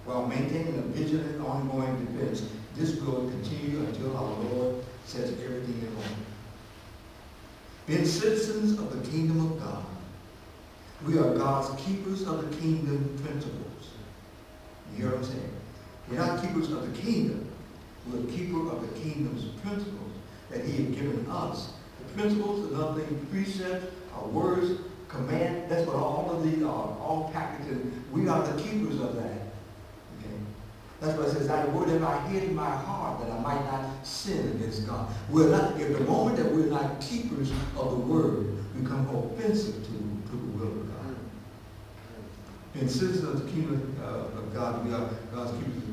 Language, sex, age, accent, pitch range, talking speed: English, male, 60-79, American, 110-155 Hz, 170 wpm